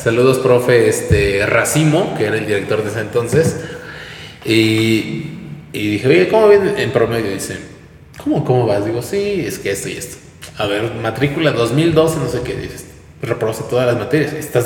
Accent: Mexican